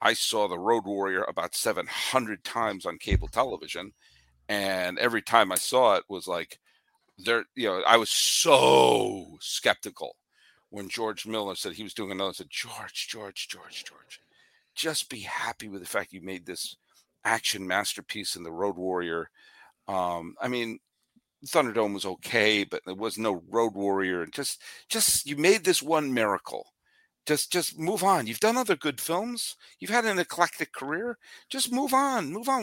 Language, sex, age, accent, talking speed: English, male, 50-69, American, 175 wpm